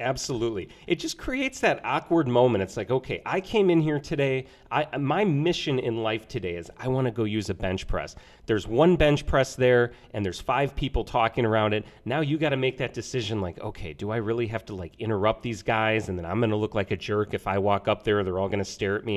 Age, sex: 30-49, male